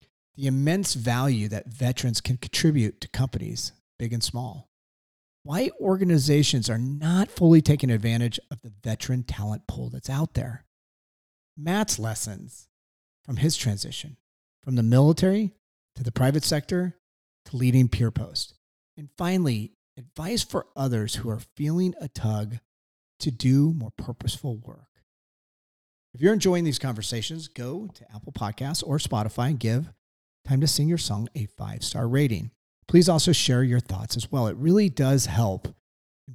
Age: 40-59